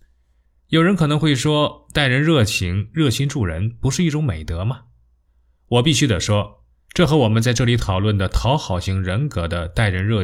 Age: 20-39